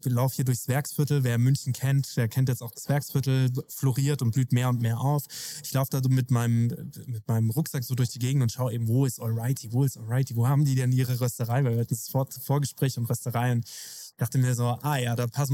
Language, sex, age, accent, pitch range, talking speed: German, male, 20-39, German, 120-145 Hz, 250 wpm